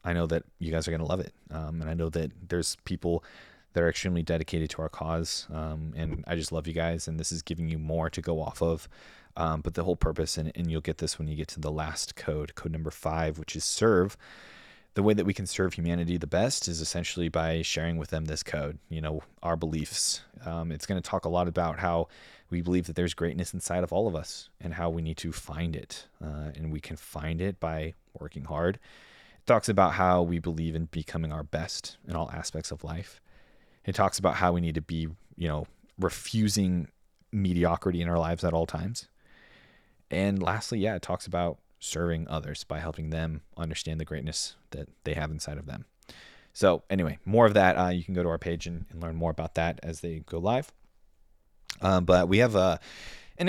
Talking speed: 225 wpm